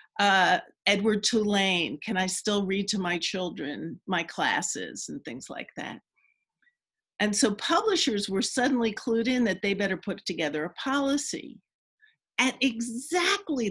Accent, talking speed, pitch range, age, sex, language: American, 140 wpm, 190-255 Hz, 50-69, female, English